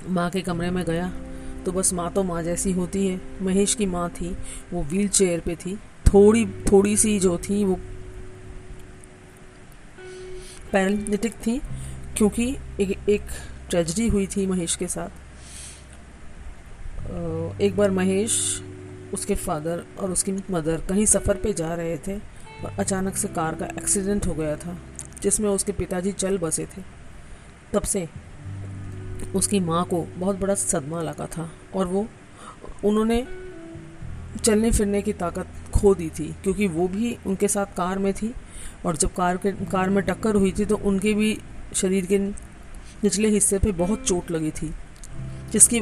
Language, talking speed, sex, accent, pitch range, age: Hindi, 150 wpm, female, native, 165-200 Hz, 40-59